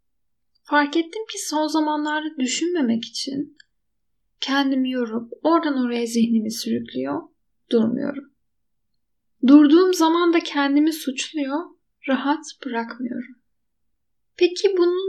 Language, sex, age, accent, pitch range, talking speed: Turkish, female, 10-29, native, 240-300 Hz, 90 wpm